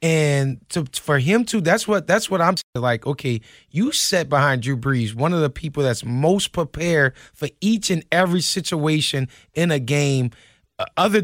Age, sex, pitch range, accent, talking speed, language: 30-49, male, 145-210 Hz, American, 180 wpm, English